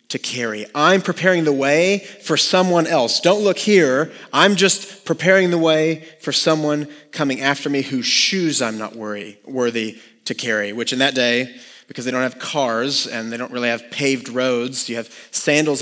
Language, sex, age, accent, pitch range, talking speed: English, male, 30-49, American, 120-150 Hz, 185 wpm